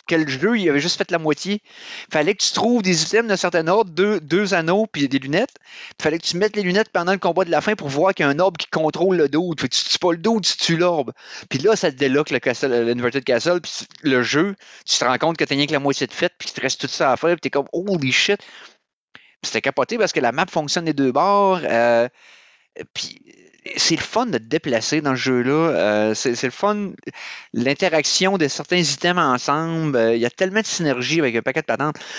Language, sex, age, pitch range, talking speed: French, male, 30-49, 120-185 Hz, 255 wpm